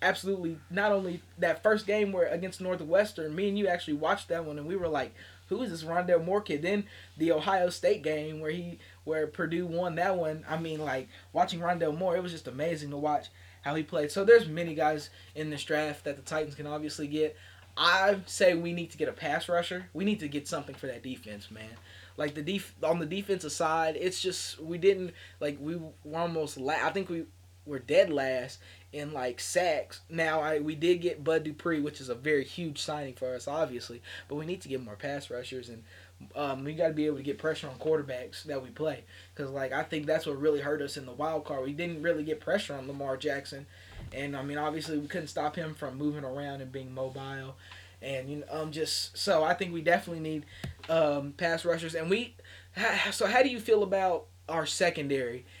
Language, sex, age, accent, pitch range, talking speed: English, male, 20-39, American, 135-170 Hz, 225 wpm